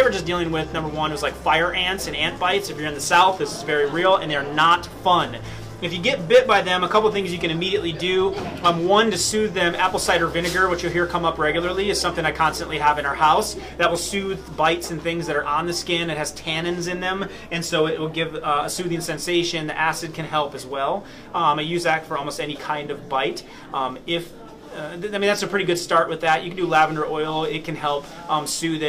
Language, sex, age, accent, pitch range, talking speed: English, male, 30-49, American, 150-175 Hz, 260 wpm